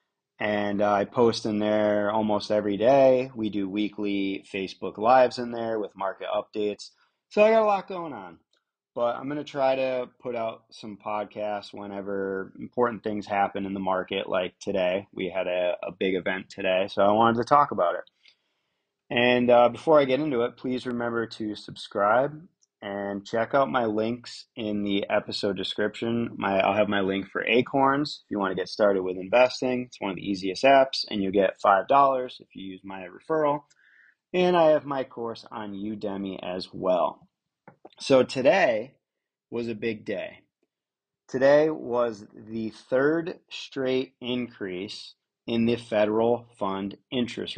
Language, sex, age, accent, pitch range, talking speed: English, male, 30-49, American, 100-130 Hz, 170 wpm